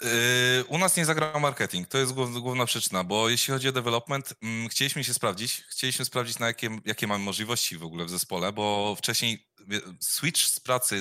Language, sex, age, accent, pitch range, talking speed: Polish, male, 20-39, native, 105-125 Hz, 180 wpm